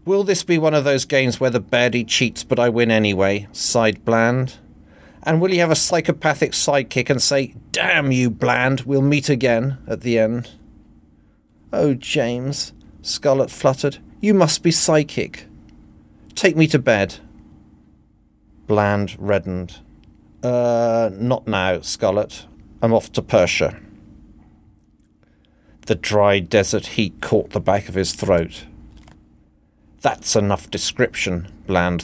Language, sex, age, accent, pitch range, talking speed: English, male, 40-59, British, 85-125 Hz, 135 wpm